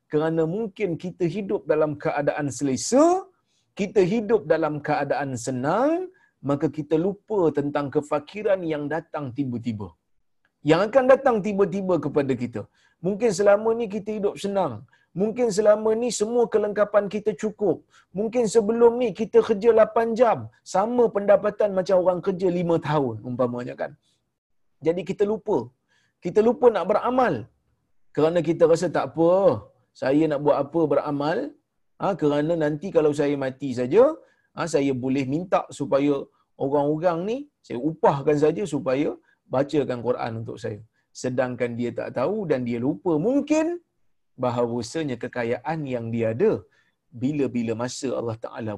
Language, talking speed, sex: Malayalam, 140 wpm, male